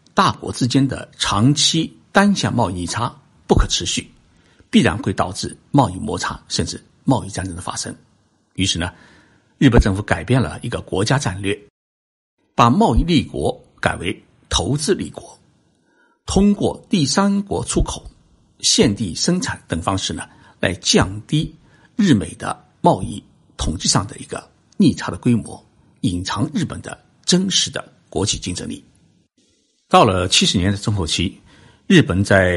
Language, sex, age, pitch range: Chinese, male, 60-79, 90-135 Hz